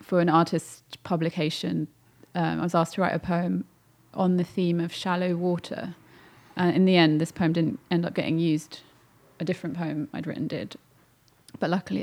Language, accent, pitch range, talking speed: English, British, 170-185 Hz, 190 wpm